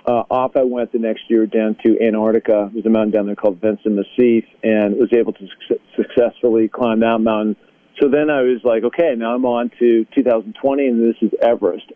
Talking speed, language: 210 wpm, English